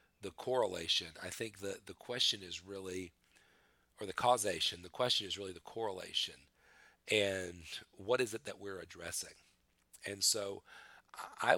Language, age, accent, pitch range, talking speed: English, 40-59, American, 85-100 Hz, 145 wpm